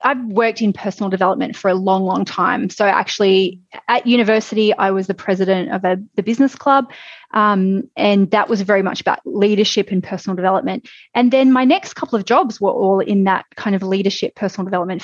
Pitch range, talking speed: 200-270 Hz, 195 wpm